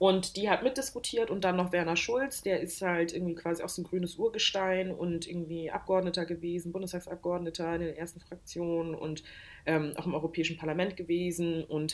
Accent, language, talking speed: German, German, 175 wpm